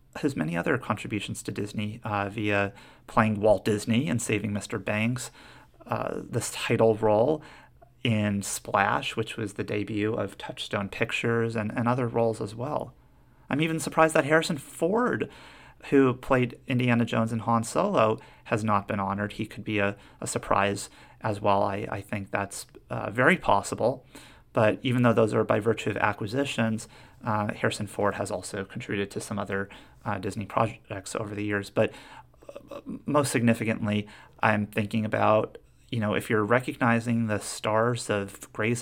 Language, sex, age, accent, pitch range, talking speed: English, male, 30-49, American, 105-125 Hz, 165 wpm